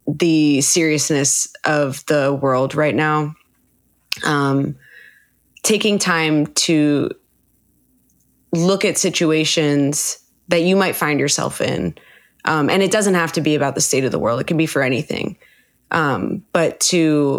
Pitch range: 145-175 Hz